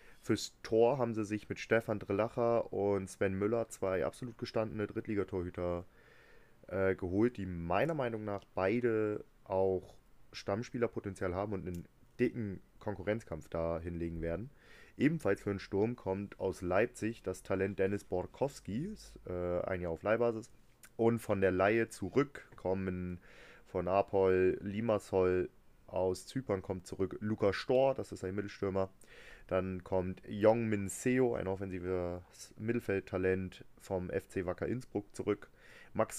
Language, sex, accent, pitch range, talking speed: German, male, German, 90-110 Hz, 130 wpm